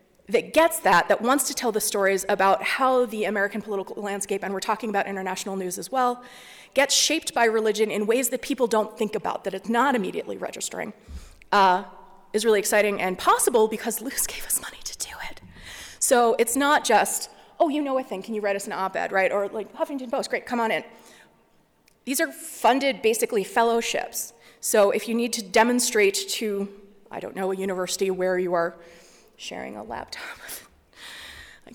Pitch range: 195-255 Hz